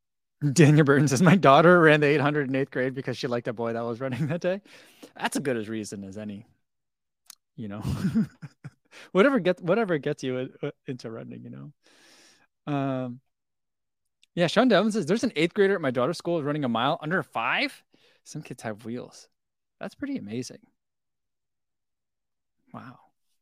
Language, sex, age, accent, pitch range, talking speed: English, male, 20-39, American, 125-170 Hz, 165 wpm